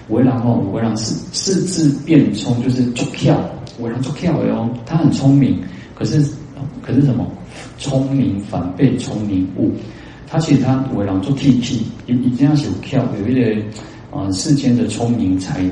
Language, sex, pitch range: Chinese, male, 100-135 Hz